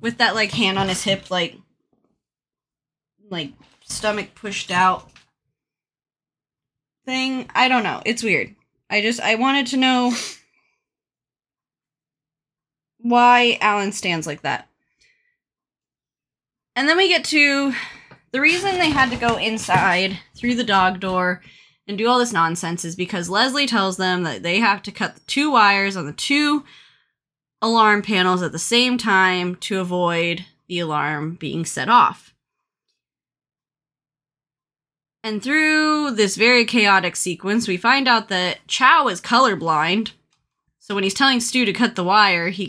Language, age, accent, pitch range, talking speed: English, 20-39, American, 170-235 Hz, 145 wpm